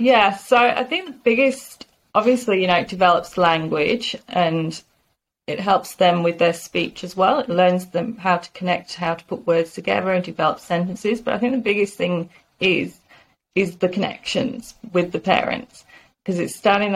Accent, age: British, 30-49